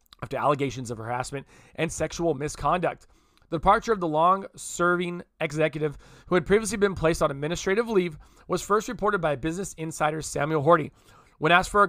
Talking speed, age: 165 wpm, 20-39